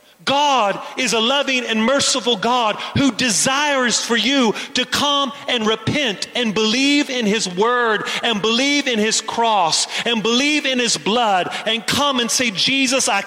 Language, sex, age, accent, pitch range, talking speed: English, male, 40-59, American, 210-255 Hz, 165 wpm